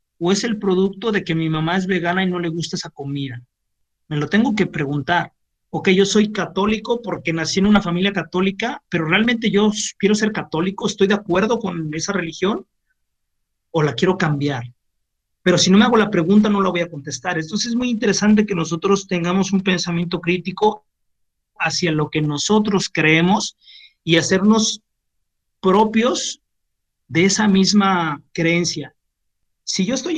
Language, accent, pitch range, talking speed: Spanish, Mexican, 155-200 Hz, 165 wpm